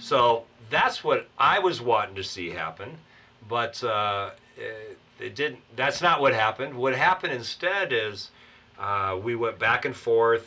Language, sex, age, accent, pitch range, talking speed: English, male, 40-59, American, 105-150 Hz, 160 wpm